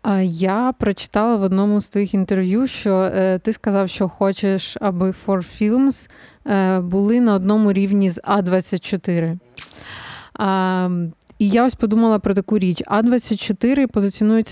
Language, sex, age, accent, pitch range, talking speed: Ukrainian, female, 20-39, native, 195-225 Hz, 125 wpm